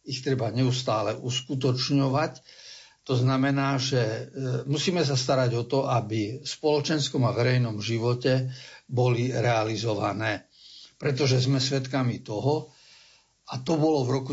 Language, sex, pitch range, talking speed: Slovak, male, 120-140 Hz, 120 wpm